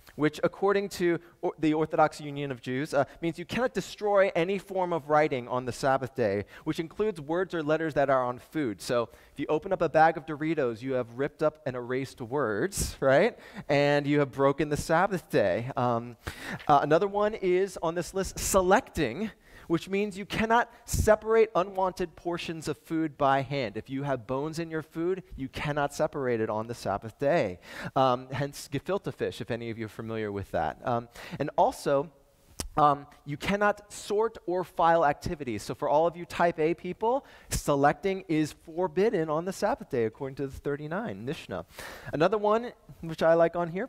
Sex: male